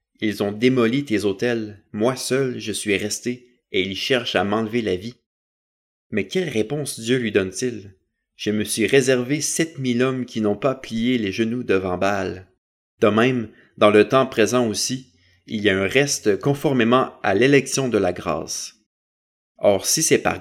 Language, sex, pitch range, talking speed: French, male, 100-135 Hz, 175 wpm